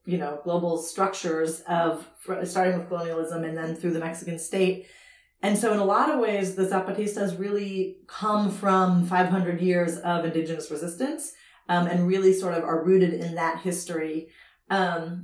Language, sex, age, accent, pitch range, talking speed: English, female, 30-49, American, 165-195 Hz, 165 wpm